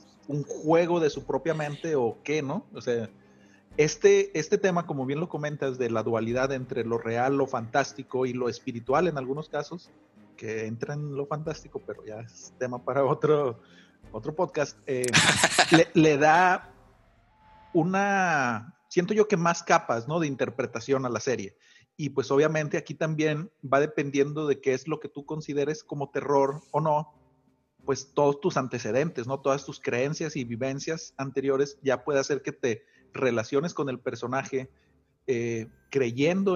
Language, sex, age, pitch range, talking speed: Spanish, male, 40-59, 125-155 Hz, 165 wpm